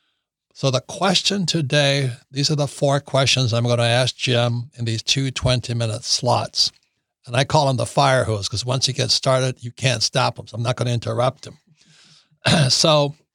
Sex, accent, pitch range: male, American, 120-145 Hz